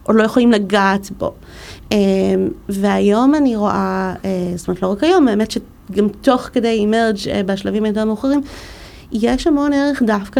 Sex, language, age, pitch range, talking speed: female, Hebrew, 30-49, 190-230 Hz, 155 wpm